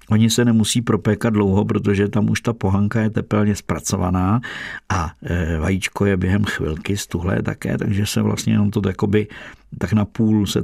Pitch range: 95-110 Hz